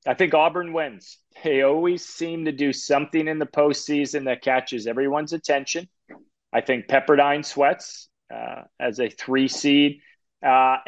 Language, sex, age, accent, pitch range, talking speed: English, male, 30-49, American, 115-140 Hz, 150 wpm